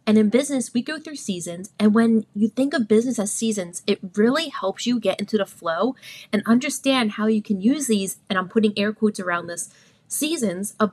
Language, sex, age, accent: English, female, 20-39, American